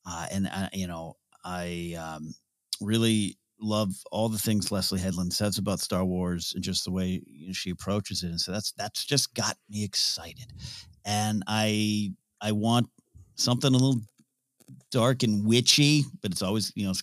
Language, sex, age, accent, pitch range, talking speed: English, male, 40-59, American, 95-110 Hz, 180 wpm